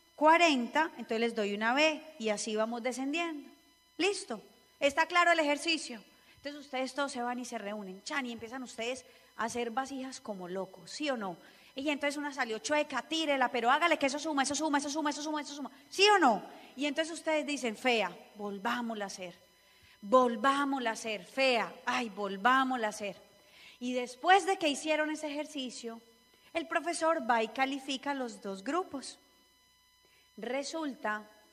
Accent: Colombian